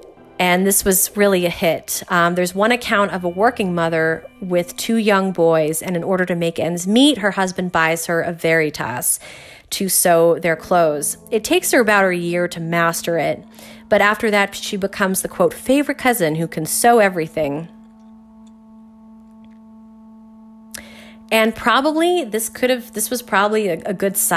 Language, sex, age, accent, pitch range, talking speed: English, female, 30-49, American, 170-220 Hz, 165 wpm